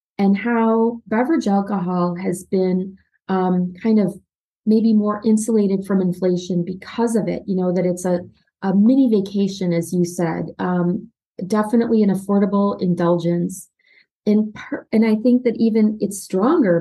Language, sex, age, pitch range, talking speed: English, female, 30-49, 180-220 Hz, 145 wpm